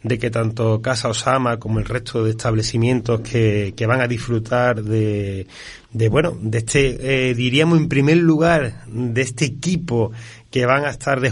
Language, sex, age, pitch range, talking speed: Spanish, male, 30-49, 120-150 Hz, 175 wpm